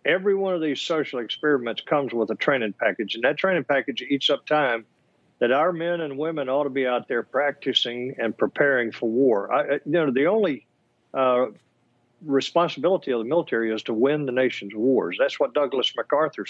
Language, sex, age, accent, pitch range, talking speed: English, male, 50-69, American, 125-170 Hz, 195 wpm